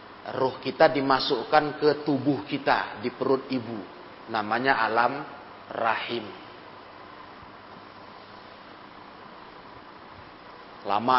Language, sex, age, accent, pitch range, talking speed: Indonesian, male, 40-59, native, 110-135 Hz, 70 wpm